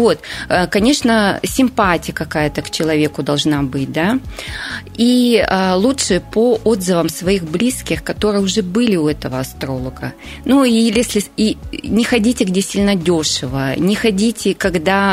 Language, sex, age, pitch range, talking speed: Russian, female, 30-49, 165-220 Hz, 130 wpm